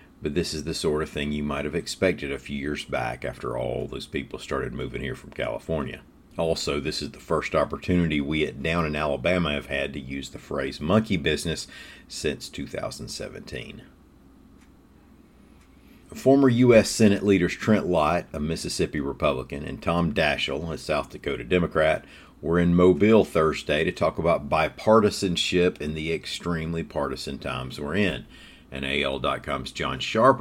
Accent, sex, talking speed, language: American, male, 160 wpm, English